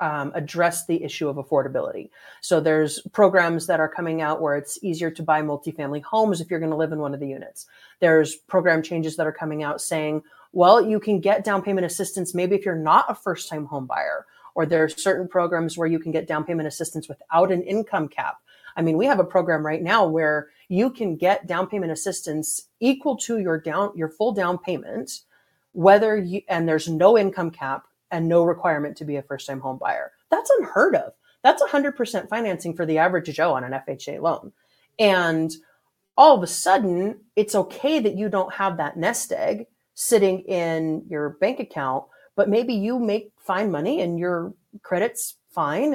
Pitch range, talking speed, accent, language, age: 160-210 Hz, 200 wpm, American, English, 30-49